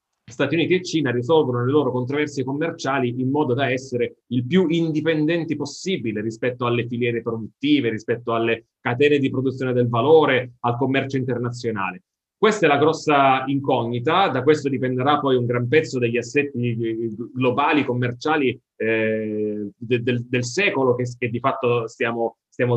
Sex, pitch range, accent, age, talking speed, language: male, 120-140 Hz, native, 30-49, 150 wpm, Italian